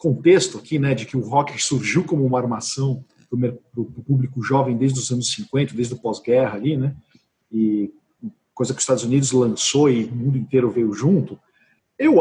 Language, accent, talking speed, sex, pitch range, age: Portuguese, Brazilian, 185 wpm, male, 130-185 Hz, 50-69